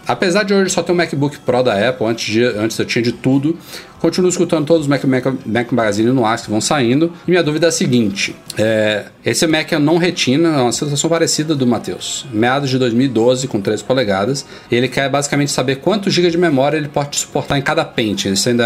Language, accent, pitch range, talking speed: Portuguese, Brazilian, 120-150 Hz, 225 wpm